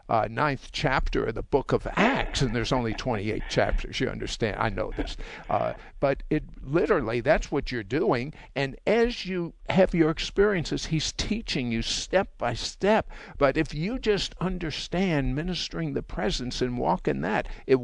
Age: 50-69